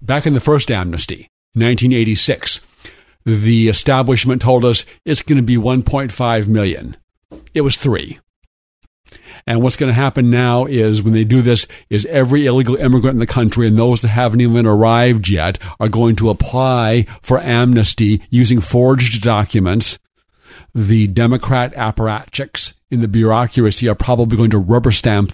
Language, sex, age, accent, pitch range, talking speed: English, male, 50-69, American, 110-130 Hz, 155 wpm